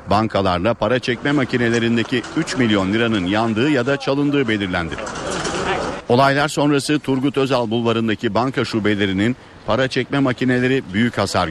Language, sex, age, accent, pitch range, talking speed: Turkish, male, 50-69, native, 105-130 Hz, 125 wpm